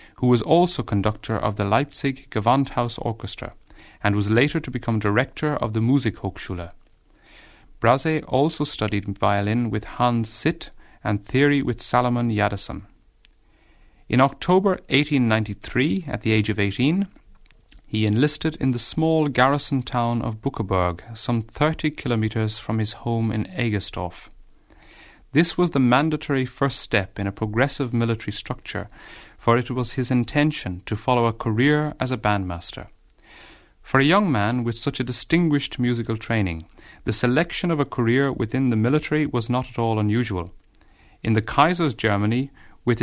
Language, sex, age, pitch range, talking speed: English, male, 30-49, 110-140 Hz, 150 wpm